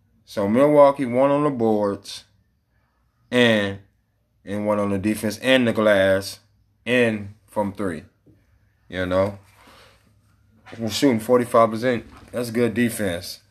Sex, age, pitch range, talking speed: male, 20-39, 100-120 Hz, 125 wpm